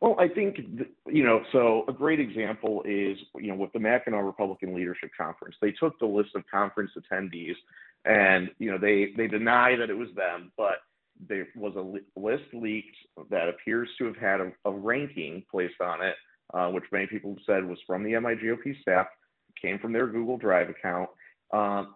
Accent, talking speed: American, 190 wpm